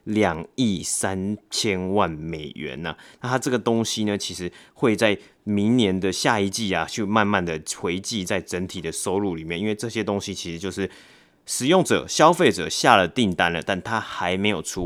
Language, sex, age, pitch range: Chinese, male, 30-49, 95-115 Hz